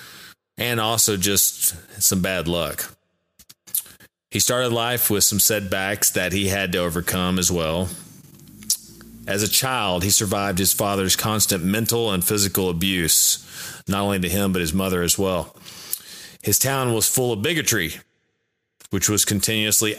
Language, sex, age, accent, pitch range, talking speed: English, male, 30-49, American, 90-110 Hz, 145 wpm